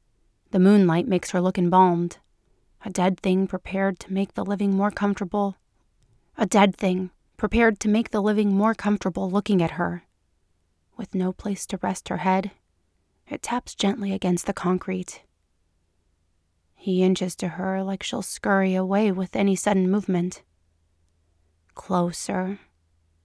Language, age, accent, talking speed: English, 30-49, American, 140 wpm